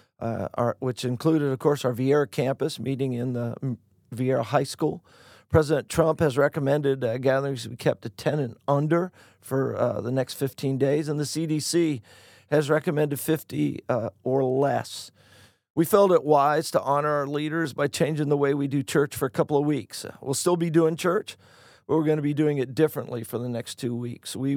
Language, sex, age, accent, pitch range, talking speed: English, male, 50-69, American, 130-155 Hz, 200 wpm